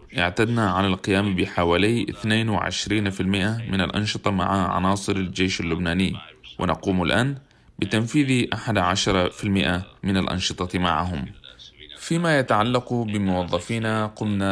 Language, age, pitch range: Arabic, 30-49, 90-110 Hz